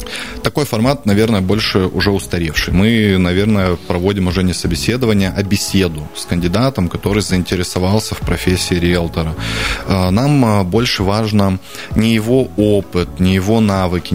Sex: male